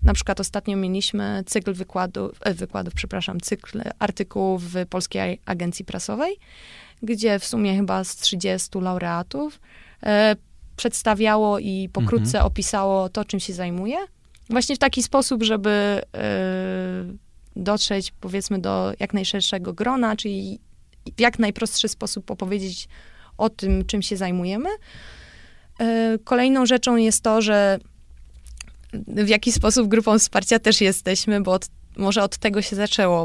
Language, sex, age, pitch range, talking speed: Polish, female, 20-39, 190-225 Hz, 125 wpm